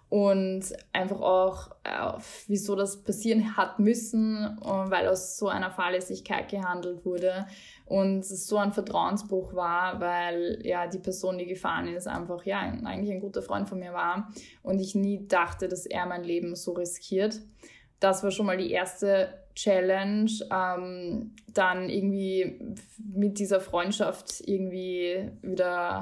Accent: German